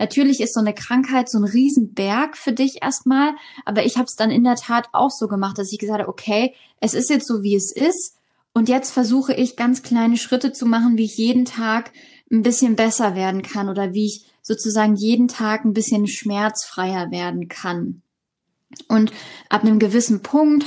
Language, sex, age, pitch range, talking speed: German, female, 10-29, 205-240 Hz, 195 wpm